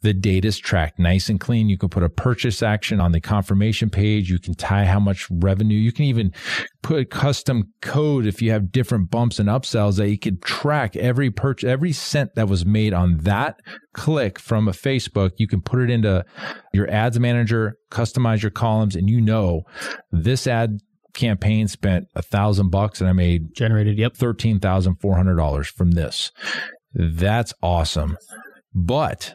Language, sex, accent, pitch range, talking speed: English, male, American, 100-125 Hz, 185 wpm